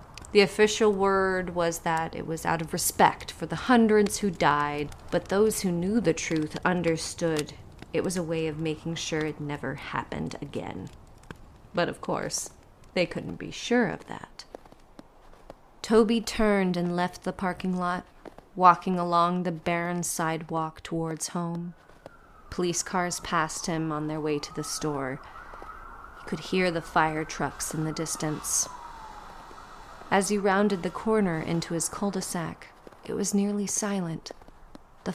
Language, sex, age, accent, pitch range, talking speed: English, female, 30-49, American, 165-200 Hz, 150 wpm